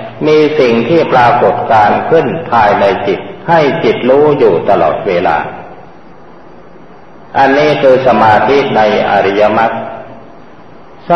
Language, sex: Thai, male